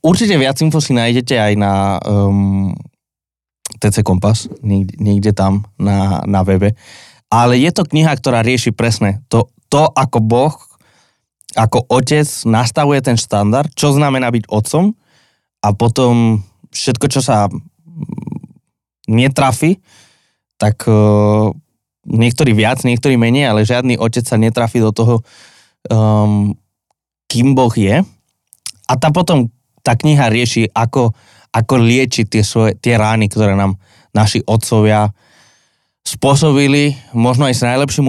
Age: 20-39